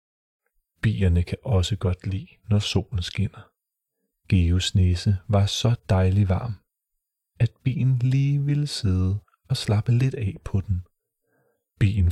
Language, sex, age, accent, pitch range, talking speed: Danish, male, 30-49, native, 95-120 Hz, 130 wpm